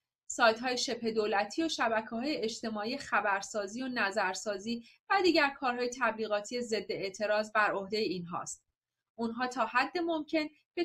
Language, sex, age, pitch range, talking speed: Persian, female, 30-49, 210-285 Hz, 145 wpm